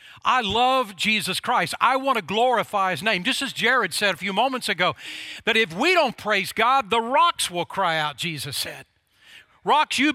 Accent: American